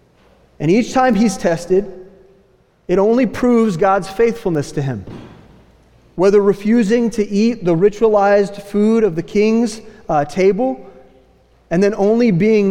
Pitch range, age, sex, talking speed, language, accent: 175-220 Hz, 30-49, male, 130 wpm, English, American